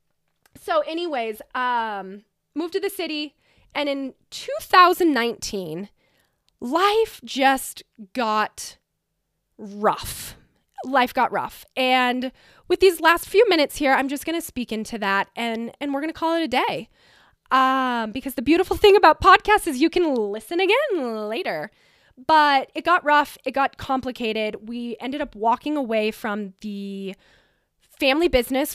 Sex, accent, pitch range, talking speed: female, American, 225-320 Hz, 145 wpm